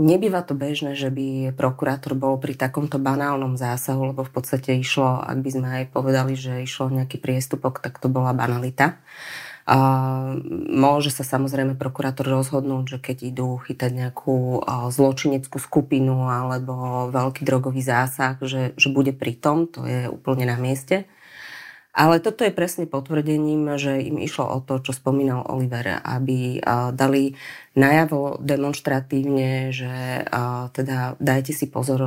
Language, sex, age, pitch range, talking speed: Slovak, female, 30-49, 130-145 Hz, 145 wpm